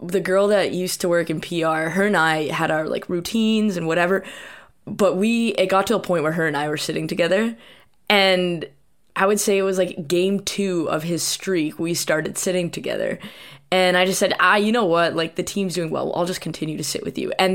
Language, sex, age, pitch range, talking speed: English, female, 20-39, 170-205 Hz, 235 wpm